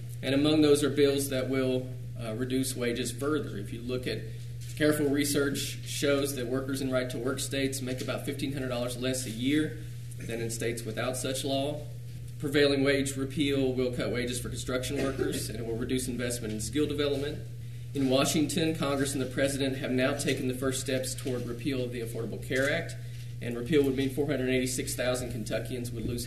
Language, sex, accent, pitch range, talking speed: English, male, American, 120-135 Hz, 180 wpm